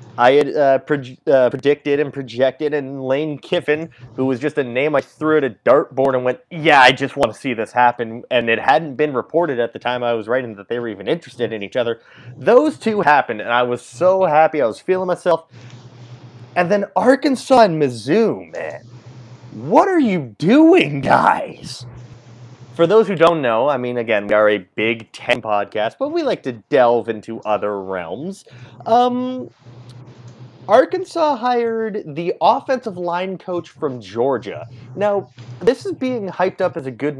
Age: 30-49